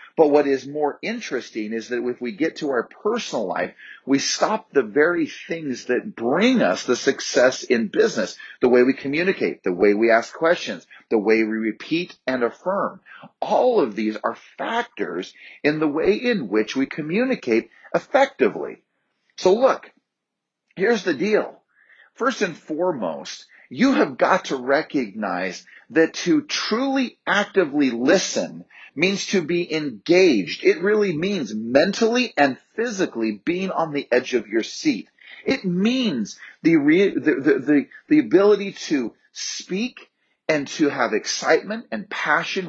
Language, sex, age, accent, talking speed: English, male, 40-59, American, 150 wpm